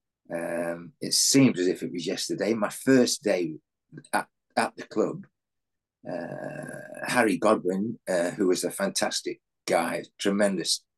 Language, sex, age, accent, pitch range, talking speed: English, male, 40-59, British, 115-150 Hz, 135 wpm